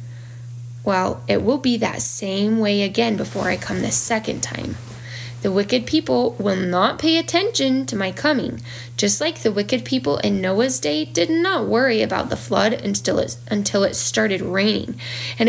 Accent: American